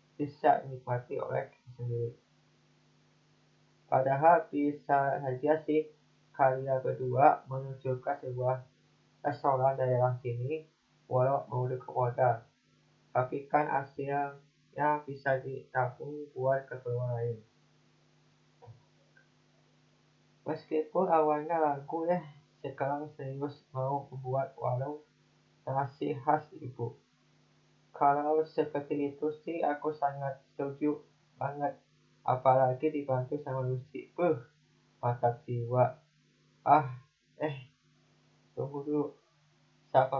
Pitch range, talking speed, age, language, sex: 130-150 Hz, 85 wpm, 20-39, Indonesian, male